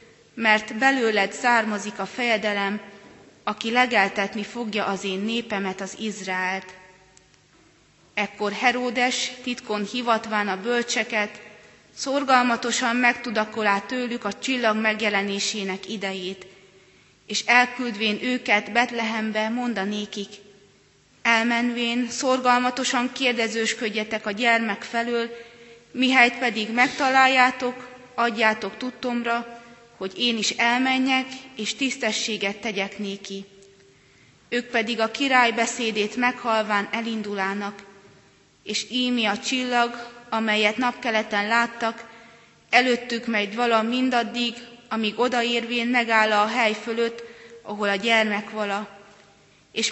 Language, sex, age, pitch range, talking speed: Hungarian, female, 30-49, 205-240 Hz, 95 wpm